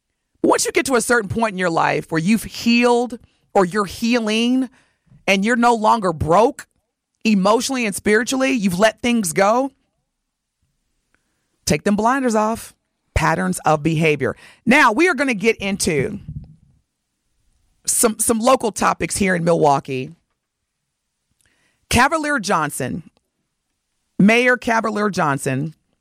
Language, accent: English, American